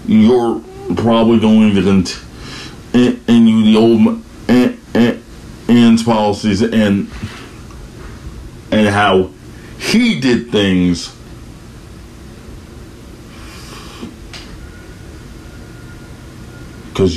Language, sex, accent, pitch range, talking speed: English, male, American, 95-120 Hz, 70 wpm